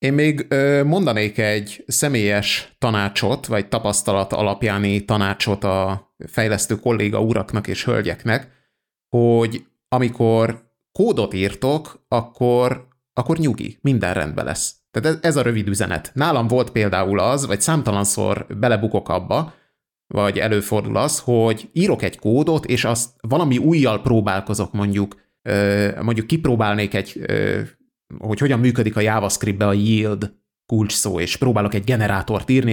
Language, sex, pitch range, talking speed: Hungarian, male, 105-130 Hz, 125 wpm